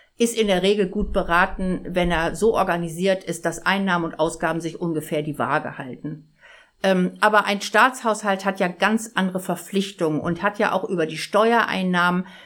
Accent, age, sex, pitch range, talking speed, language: German, 50-69, female, 165-210 Hz, 170 wpm, German